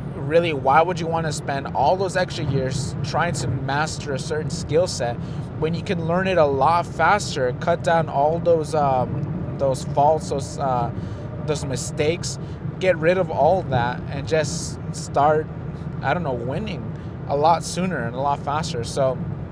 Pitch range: 135-160 Hz